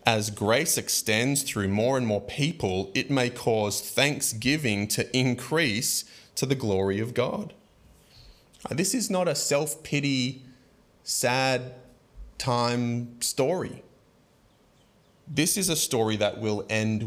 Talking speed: 120 wpm